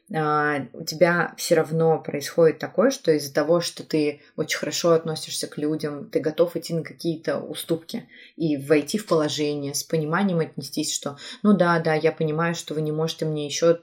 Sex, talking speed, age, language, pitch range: female, 180 wpm, 20-39, Russian, 150-175 Hz